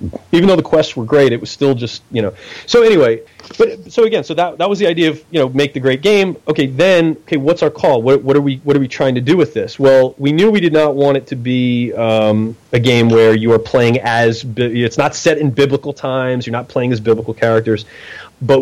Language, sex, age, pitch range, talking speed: English, male, 30-49, 115-145 Hz, 255 wpm